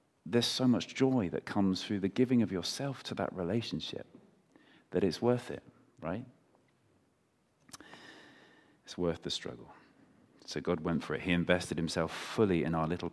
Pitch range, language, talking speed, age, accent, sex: 90-120 Hz, English, 160 wpm, 40-59, British, male